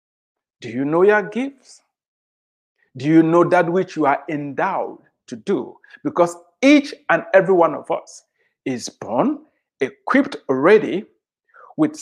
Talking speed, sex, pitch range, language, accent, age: 135 wpm, male, 160-245 Hz, English, Nigerian, 60-79